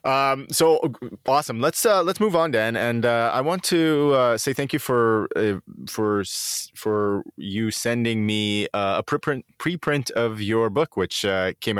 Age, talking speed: 20-39, 180 wpm